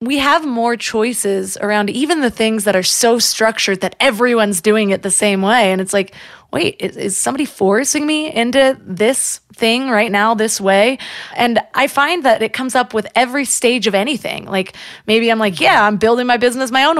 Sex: female